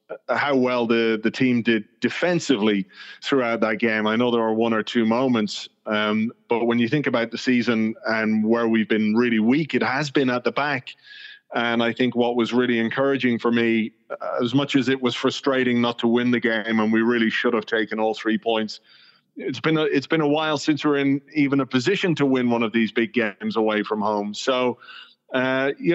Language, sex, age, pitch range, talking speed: English, male, 30-49, 115-135 Hz, 215 wpm